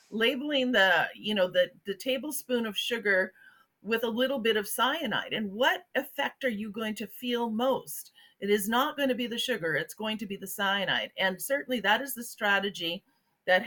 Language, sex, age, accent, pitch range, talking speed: English, female, 40-59, American, 200-260 Hz, 200 wpm